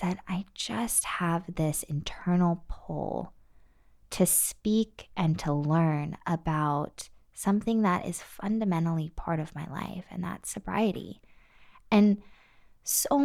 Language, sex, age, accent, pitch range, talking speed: English, female, 20-39, American, 165-225 Hz, 120 wpm